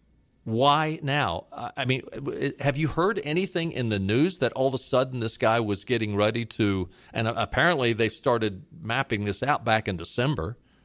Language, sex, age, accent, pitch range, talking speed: English, male, 50-69, American, 110-150 Hz, 175 wpm